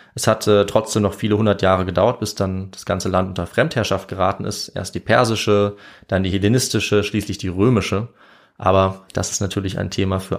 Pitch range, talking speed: 95-110 Hz, 195 wpm